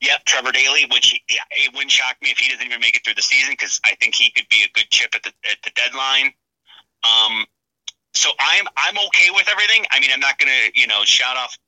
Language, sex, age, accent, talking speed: English, male, 30-49, American, 250 wpm